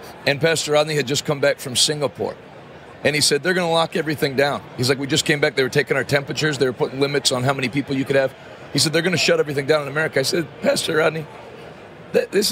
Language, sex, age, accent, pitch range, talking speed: English, male, 40-59, American, 135-170 Hz, 255 wpm